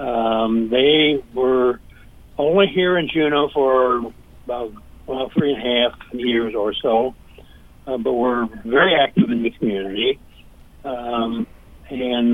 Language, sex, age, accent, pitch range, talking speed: English, male, 60-79, American, 115-140 Hz, 130 wpm